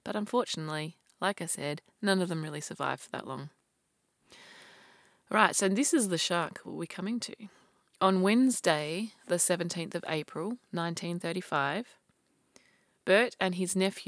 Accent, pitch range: Australian, 160-190 Hz